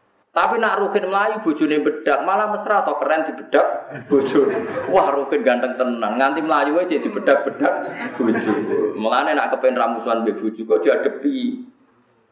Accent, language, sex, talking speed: native, Indonesian, male, 160 wpm